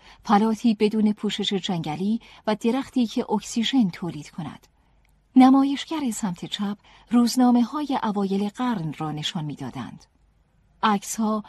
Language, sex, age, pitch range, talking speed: Persian, female, 40-59, 180-235 Hz, 105 wpm